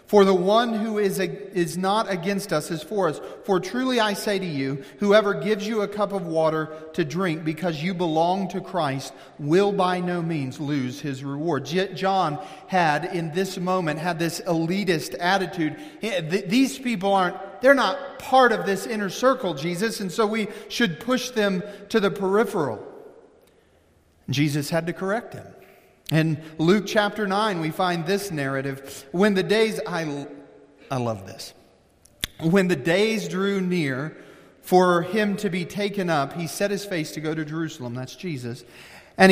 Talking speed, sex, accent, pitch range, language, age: 170 wpm, male, American, 155-200 Hz, English, 40-59